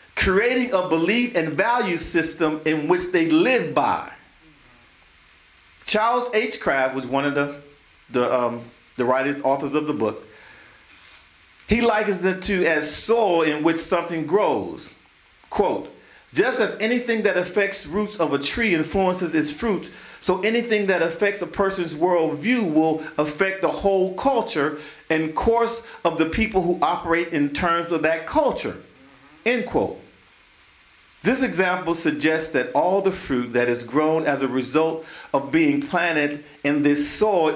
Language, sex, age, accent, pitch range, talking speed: English, male, 40-59, American, 155-220 Hz, 150 wpm